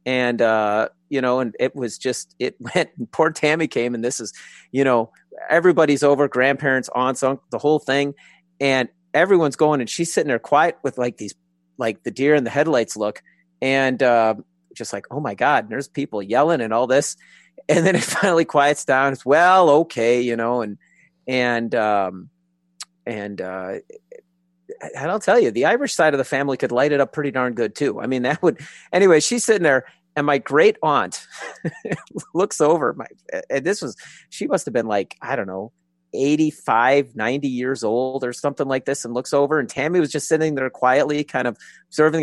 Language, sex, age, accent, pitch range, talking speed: English, male, 40-59, American, 125-160 Hz, 200 wpm